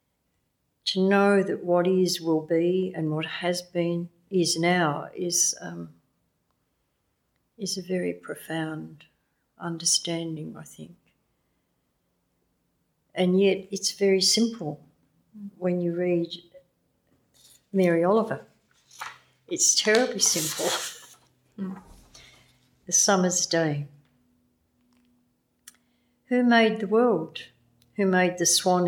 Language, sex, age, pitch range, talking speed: English, female, 60-79, 140-195 Hz, 100 wpm